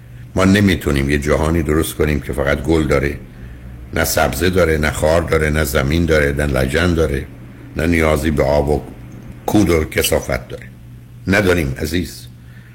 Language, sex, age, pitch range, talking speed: Persian, male, 60-79, 75-115 Hz, 155 wpm